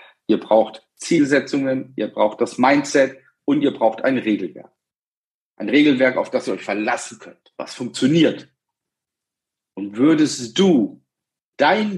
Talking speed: 130 wpm